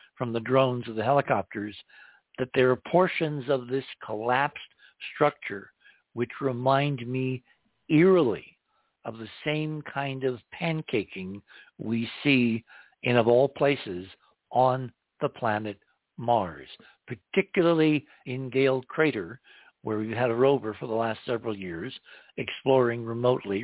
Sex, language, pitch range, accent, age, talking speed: male, English, 115-145 Hz, American, 60-79, 125 wpm